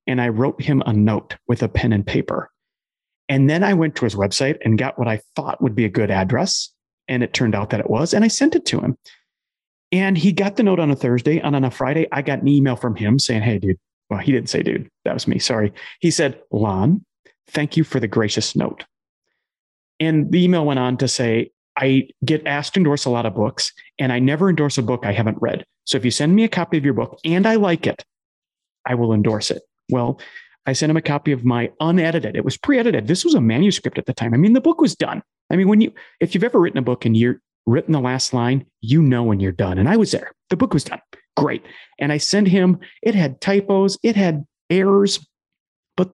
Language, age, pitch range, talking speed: English, 30-49, 115-165 Hz, 245 wpm